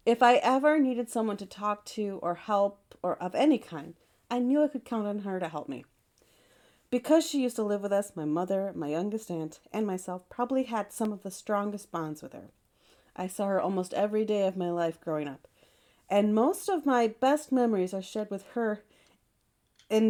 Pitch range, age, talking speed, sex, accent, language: 180-235 Hz, 30-49, 205 wpm, female, American, English